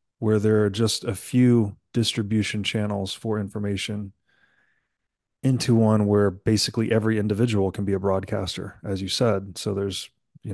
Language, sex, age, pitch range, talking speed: English, male, 30-49, 105-120 Hz, 150 wpm